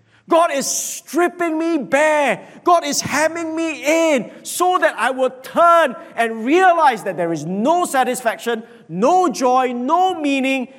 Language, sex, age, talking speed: English, male, 50-69, 145 wpm